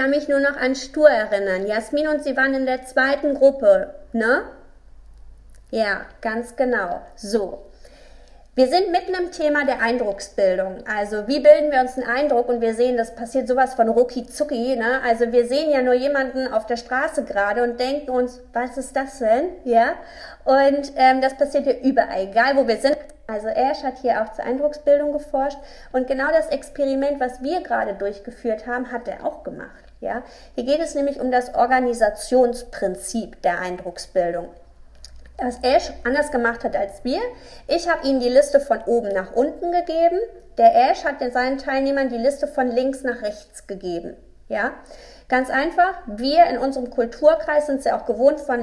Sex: female